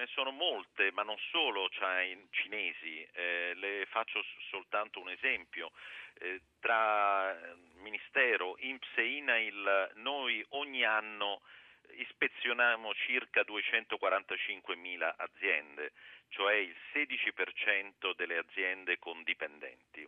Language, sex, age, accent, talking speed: Italian, male, 50-69, native, 105 wpm